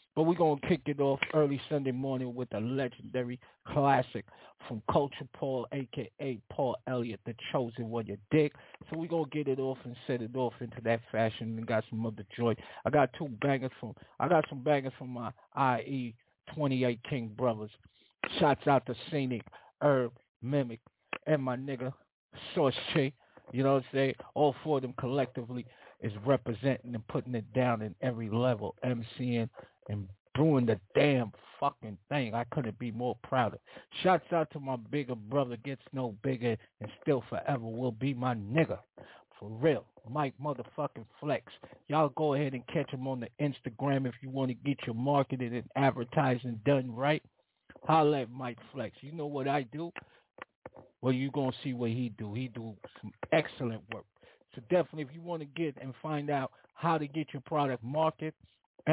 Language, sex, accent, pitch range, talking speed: English, male, American, 120-145 Hz, 180 wpm